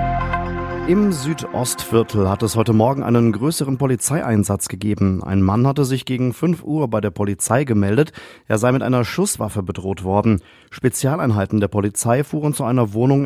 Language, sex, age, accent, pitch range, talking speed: German, male, 40-59, German, 110-135 Hz, 160 wpm